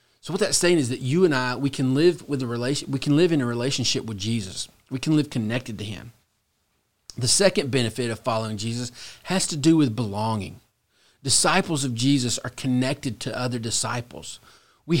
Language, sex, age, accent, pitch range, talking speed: English, male, 40-59, American, 125-160 Hz, 175 wpm